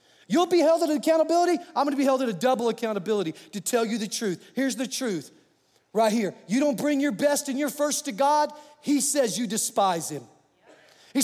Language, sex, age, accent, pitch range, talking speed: English, male, 40-59, American, 255-320 Hz, 215 wpm